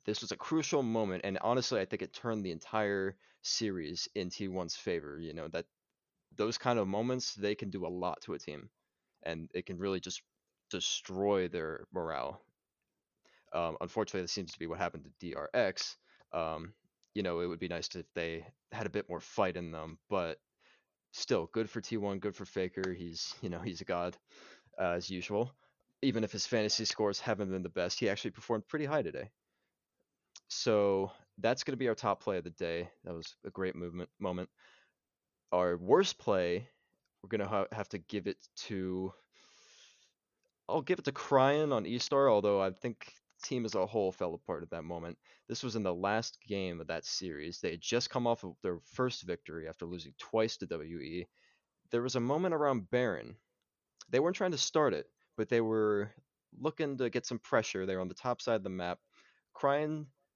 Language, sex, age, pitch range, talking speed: English, male, 20-39, 90-120 Hz, 200 wpm